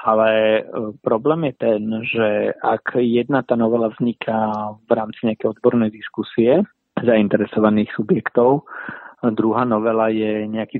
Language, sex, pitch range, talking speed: Slovak, male, 110-115 Hz, 115 wpm